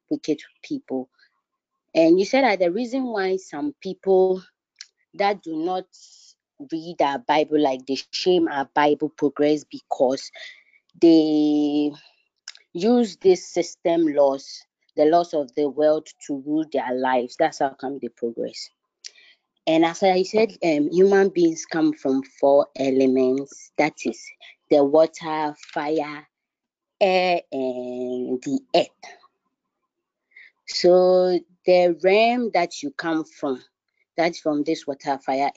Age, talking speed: 30-49, 125 wpm